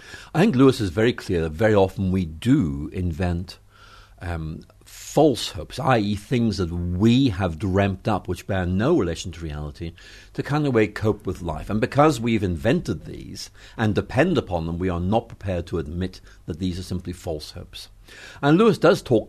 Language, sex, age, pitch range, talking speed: English, male, 50-69, 90-115 Hz, 185 wpm